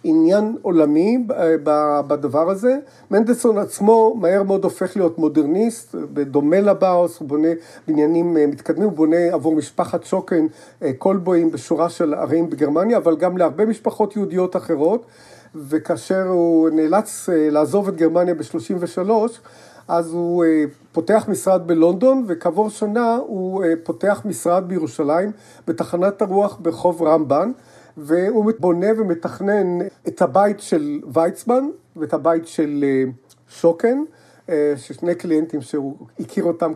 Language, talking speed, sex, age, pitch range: Hebrew, 115 wpm, male, 50-69, 155-200 Hz